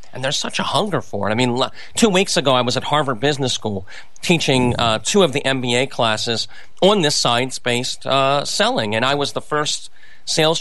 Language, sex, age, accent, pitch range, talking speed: English, male, 40-59, American, 125-175 Hz, 200 wpm